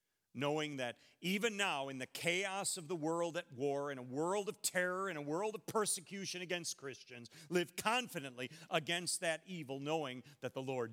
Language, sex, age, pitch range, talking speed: English, male, 50-69, 120-165 Hz, 180 wpm